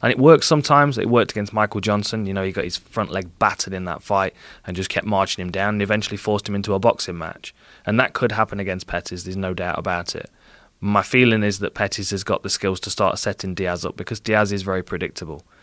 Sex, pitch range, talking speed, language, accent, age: male, 95-105 Hz, 245 wpm, English, British, 20-39